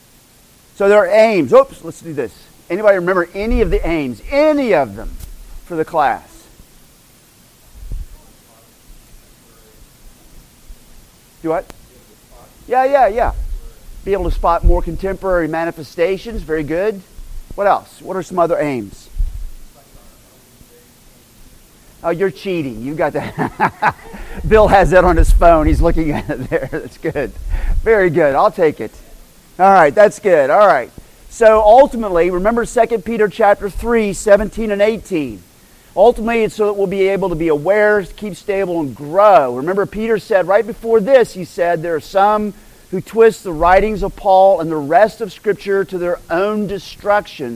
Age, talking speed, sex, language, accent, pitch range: 40-59, 150 wpm, male, English, American, 170-220 Hz